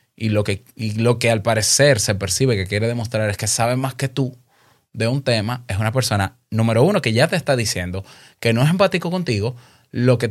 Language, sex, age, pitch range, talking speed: Spanish, male, 20-39, 105-130 Hz, 225 wpm